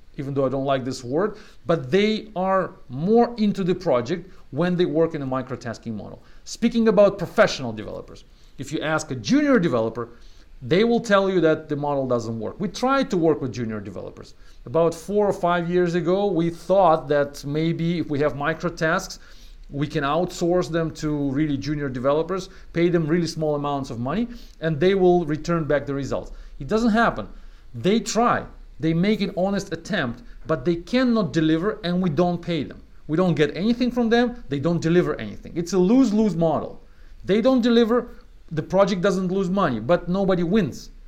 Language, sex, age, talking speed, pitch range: English, male, 40-59, 185 wpm, 145-195 Hz